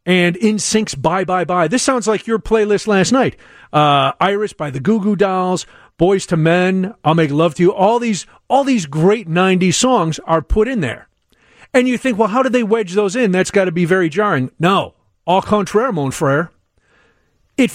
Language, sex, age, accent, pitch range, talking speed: English, male, 40-59, American, 165-230 Hz, 205 wpm